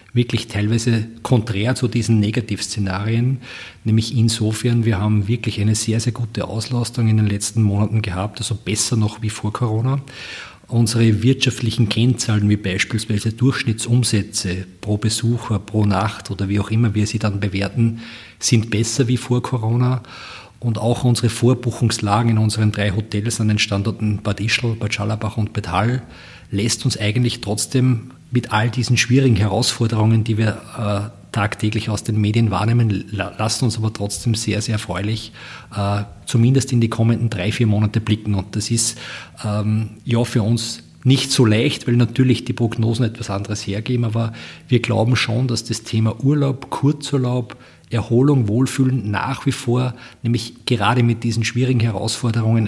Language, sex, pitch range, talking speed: German, male, 105-120 Hz, 155 wpm